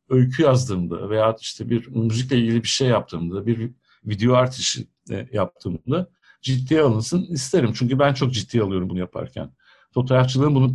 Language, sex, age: Turkish, male, 60-79